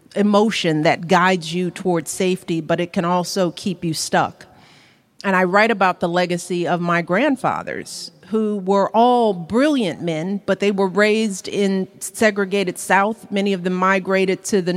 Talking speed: 165 wpm